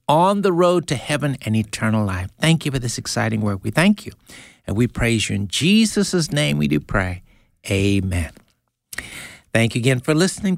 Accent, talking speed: American, 185 wpm